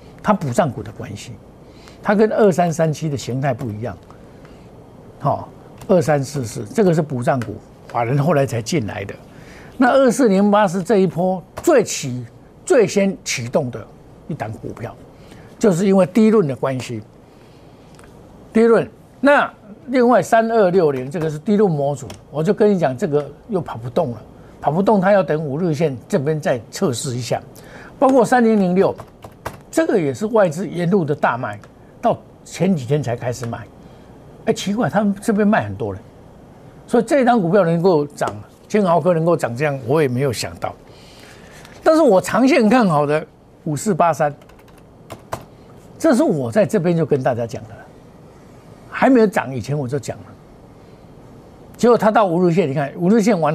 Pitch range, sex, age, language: 135-205 Hz, male, 60-79, Chinese